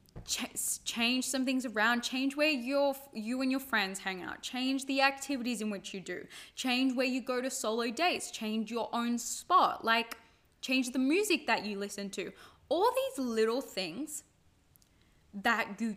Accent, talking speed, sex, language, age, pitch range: Australian, 170 wpm, female, English, 10-29, 200-265 Hz